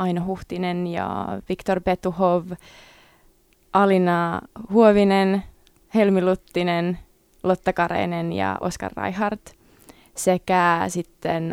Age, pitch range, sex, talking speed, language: 20-39, 170-190 Hz, female, 85 wpm, Finnish